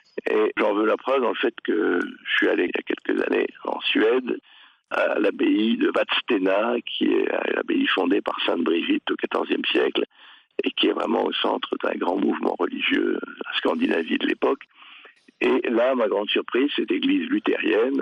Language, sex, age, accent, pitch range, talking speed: French, male, 60-79, French, 300-410 Hz, 185 wpm